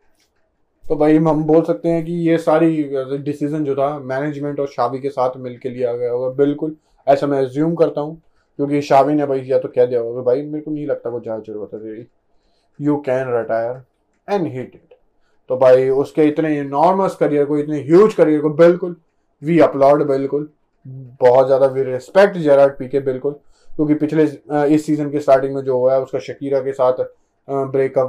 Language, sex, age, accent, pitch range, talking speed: Hindi, male, 20-39, native, 135-170 Hz, 190 wpm